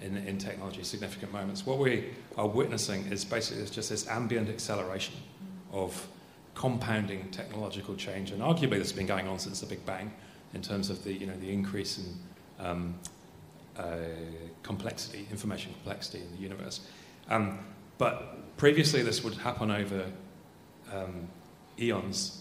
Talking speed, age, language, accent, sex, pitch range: 150 wpm, 30-49, English, British, male, 95-110 Hz